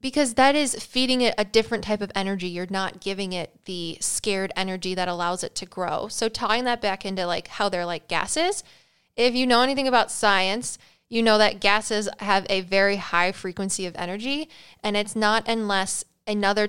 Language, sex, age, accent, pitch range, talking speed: English, female, 10-29, American, 185-230 Hz, 195 wpm